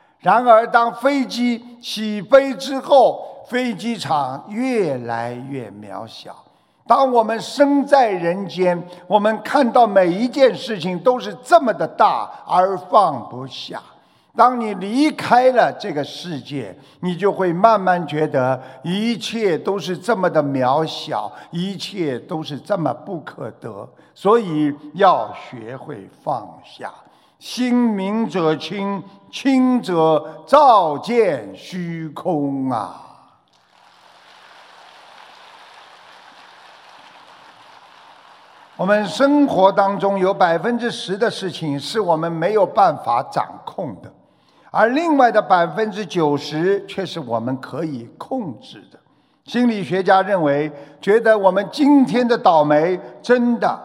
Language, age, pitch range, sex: Chinese, 50-69, 155-235 Hz, male